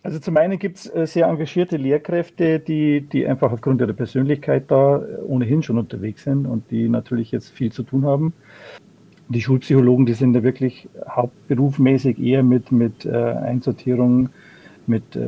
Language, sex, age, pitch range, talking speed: German, male, 50-69, 120-140 Hz, 155 wpm